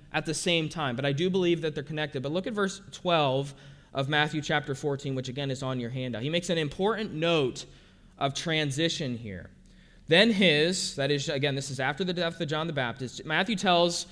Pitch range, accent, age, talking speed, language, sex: 145-200 Hz, American, 20-39, 215 wpm, English, male